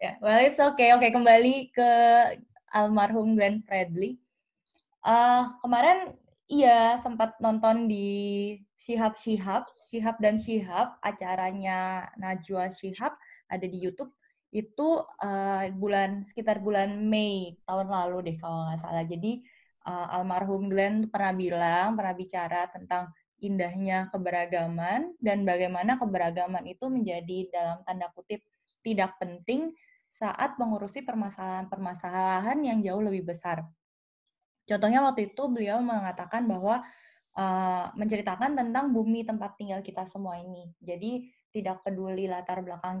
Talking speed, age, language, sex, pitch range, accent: 125 wpm, 20-39, Indonesian, female, 185-235 Hz, native